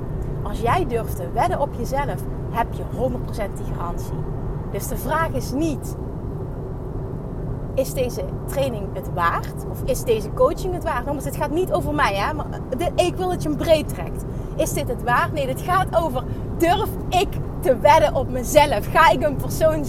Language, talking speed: Dutch, 185 wpm